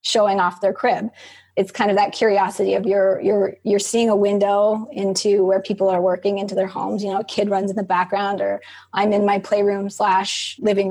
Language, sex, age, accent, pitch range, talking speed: English, female, 20-39, American, 190-210 Hz, 215 wpm